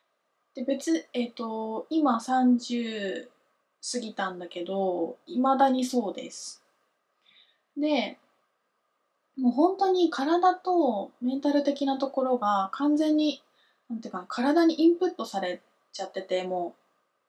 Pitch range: 220-300 Hz